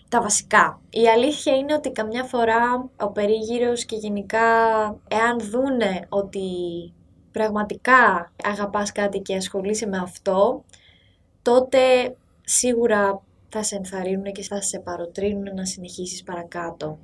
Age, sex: 20-39, female